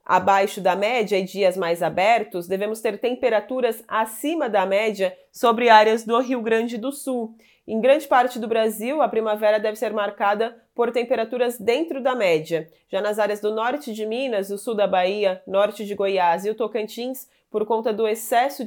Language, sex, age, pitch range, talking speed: Portuguese, female, 30-49, 195-225 Hz, 180 wpm